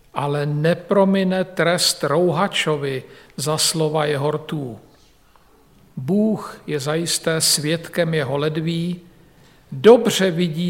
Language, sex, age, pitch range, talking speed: Slovak, male, 50-69, 160-210 Hz, 90 wpm